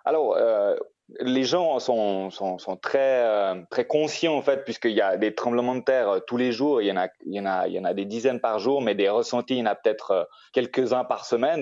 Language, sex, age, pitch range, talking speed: French, male, 30-49, 110-150 Hz, 265 wpm